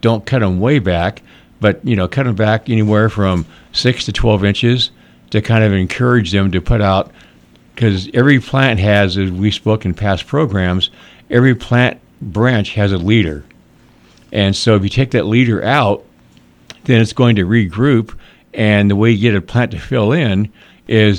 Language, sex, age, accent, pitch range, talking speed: English, male, 50-69, American, 95-115 Hz, 185 wpm